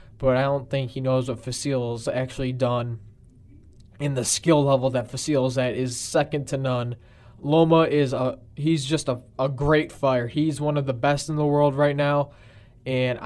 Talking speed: 190 wpm